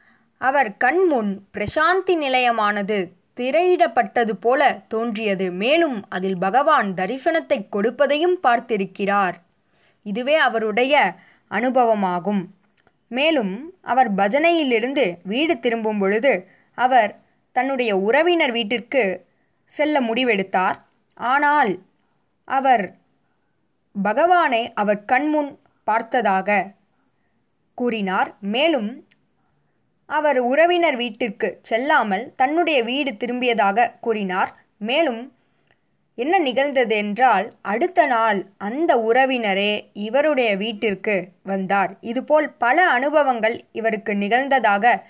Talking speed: 80 wpm